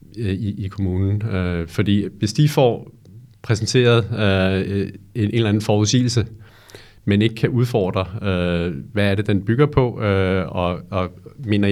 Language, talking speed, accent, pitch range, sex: Danish, 155 wpm, native, 95-115 Hz, male